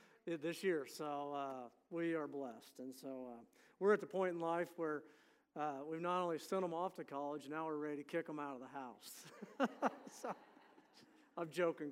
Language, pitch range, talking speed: English, 145-175 Hz, 190 wpm